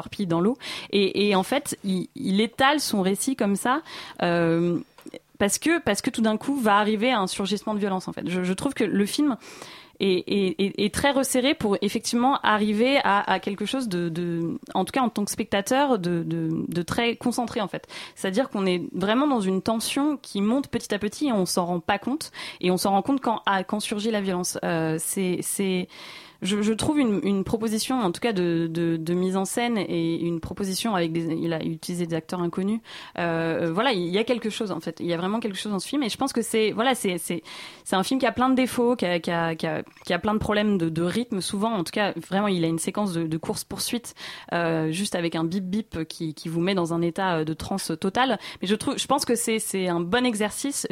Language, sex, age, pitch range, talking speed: French, female, 20-39, 175-230 Hz, 250 wpm